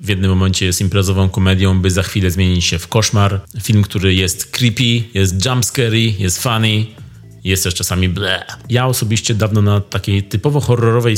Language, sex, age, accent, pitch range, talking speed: Polish, male, 30-49, native, 95-115 Hz, 175 wpm